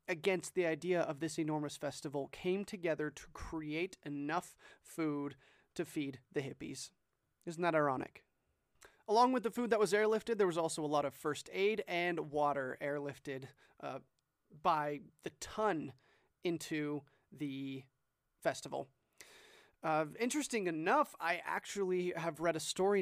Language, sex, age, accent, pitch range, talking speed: English, male, 30-49, American, 150-195 Hz, 140 wpm